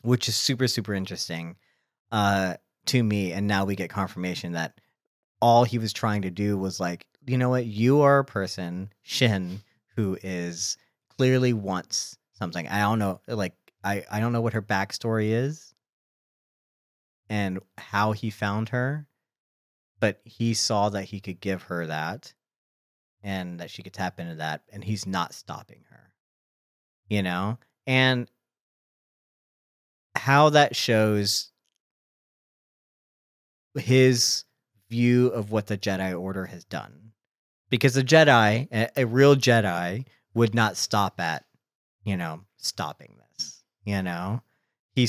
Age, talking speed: 40-59, 140 wpm